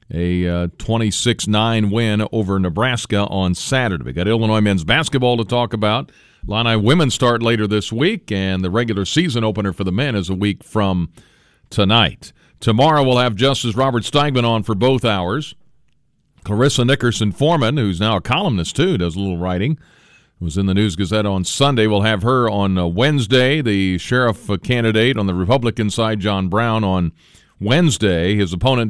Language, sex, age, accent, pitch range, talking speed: English, male, 40-59, American, 95-125 Hz, 175 wpm